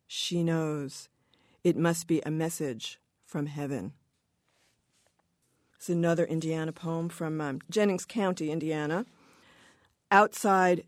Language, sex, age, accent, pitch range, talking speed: English, female, 40-59, American, 160-190 Hz, 105 wpm